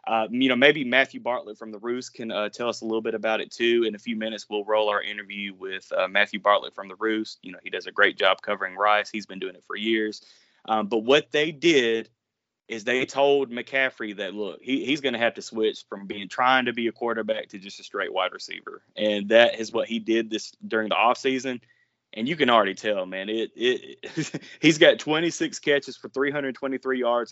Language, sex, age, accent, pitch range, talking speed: English, male, 20-39, American, 105-135 Hz, 235 wpm